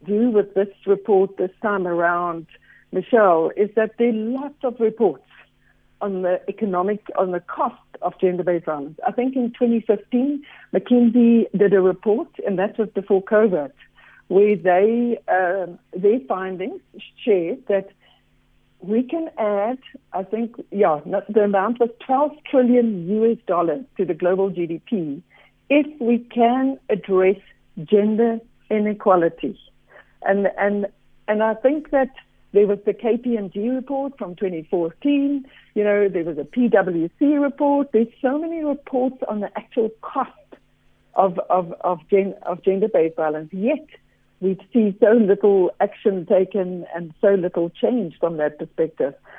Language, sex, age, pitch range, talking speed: English, female, 60-79, 185-240 Hz, 140 wpm